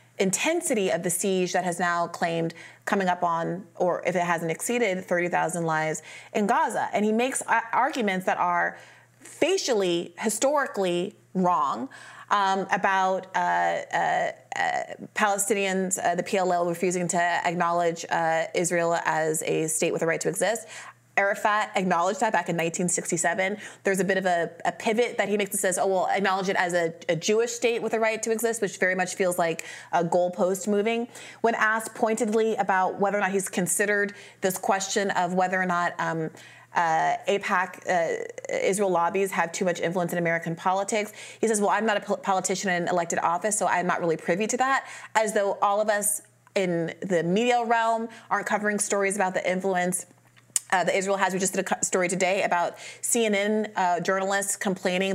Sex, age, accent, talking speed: female, 30-49, American, 175 wpm